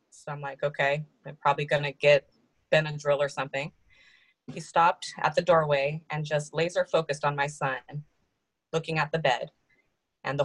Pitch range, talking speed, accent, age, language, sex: 145-165 Hz, 180 wpm, American, 20-39, English, female